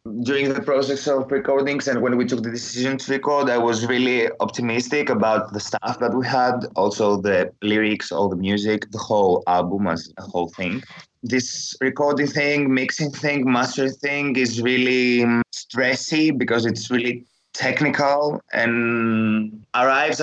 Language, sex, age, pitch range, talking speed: English, male, 20-39, 105-140 Hz, 155 wpm